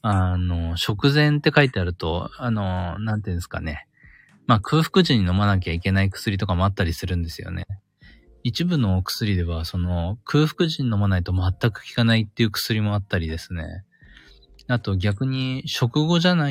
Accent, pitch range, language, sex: native, 90-130 Hz, Japanese, male